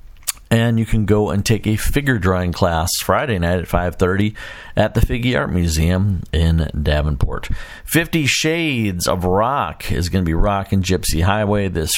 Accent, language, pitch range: American, English, 85-115 Hz